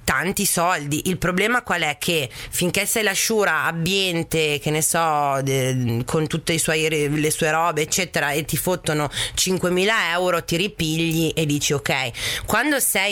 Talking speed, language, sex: 160 wpm, Italian, female